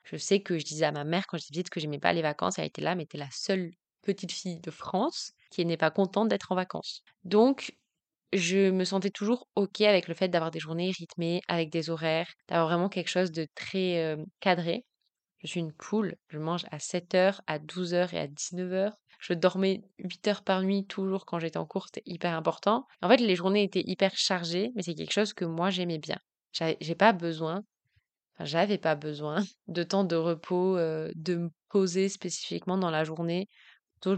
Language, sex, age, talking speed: French, female, 20-39, 210 wpm